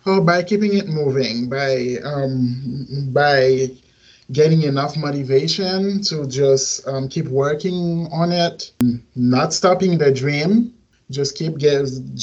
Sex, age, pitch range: male, 30-49, 130-155 Hz